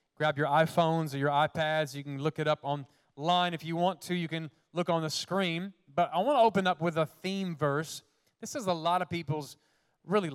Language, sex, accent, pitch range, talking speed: English, male, American, 150-190 Hz, 225 wpm